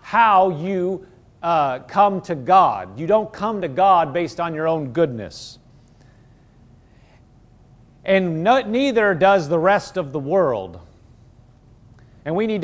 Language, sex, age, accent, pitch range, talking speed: English, male, 40-59, American, 150-230 Hz, 130 wpm